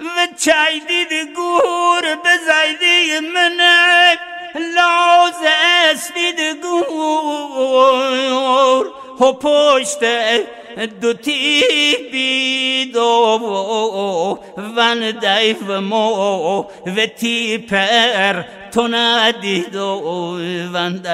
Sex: male